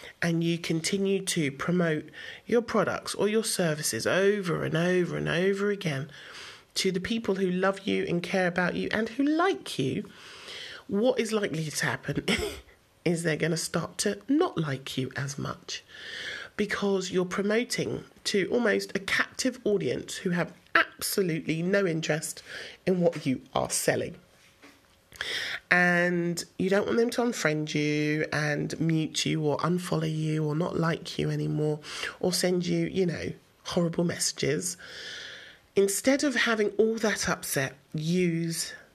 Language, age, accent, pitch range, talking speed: English, 40-59, British, 160-205 Hz, 150 wpm